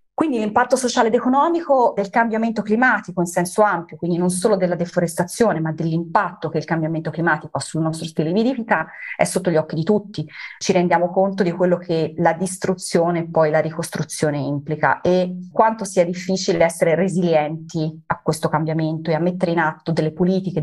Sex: female